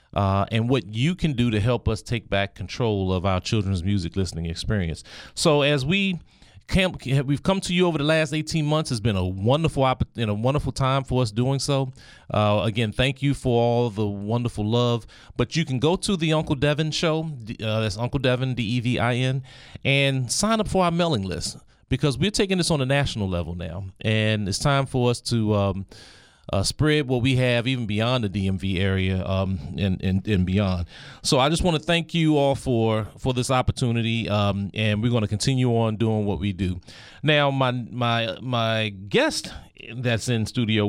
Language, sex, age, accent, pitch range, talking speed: English, male, 30-49, American, 105-140 Hz, 200 wpm